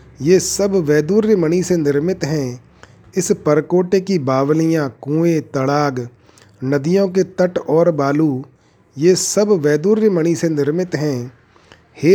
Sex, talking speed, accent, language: male, 120 wpm, native, Hindi